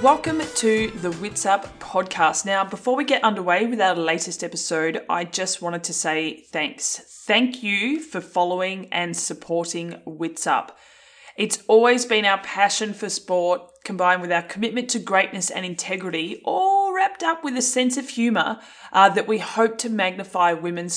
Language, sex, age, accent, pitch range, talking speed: English, female, 20-39, Australian, 175-220 Hz, 170 wpm